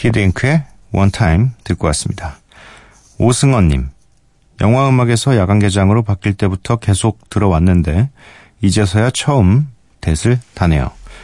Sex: male